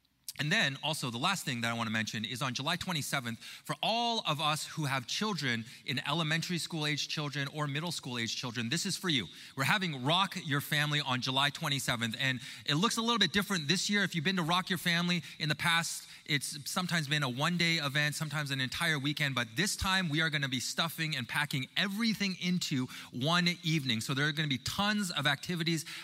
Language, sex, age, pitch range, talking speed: English, male, 20-39, 120-160 Hz, 220 wpm